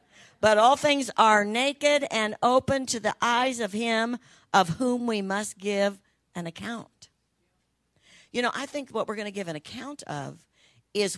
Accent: American